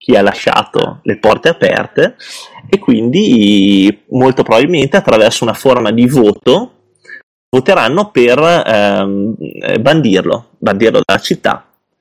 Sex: male